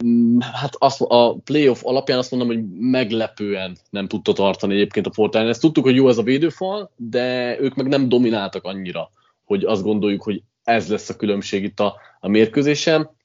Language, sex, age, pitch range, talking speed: Hungarian, male, 20-39, 110-130 Hz, 180 wpm